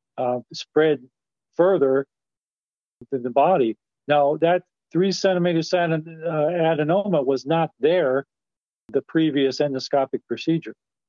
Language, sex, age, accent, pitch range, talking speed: English, male, 40-59, American, 130-160 Hz, 95 wpm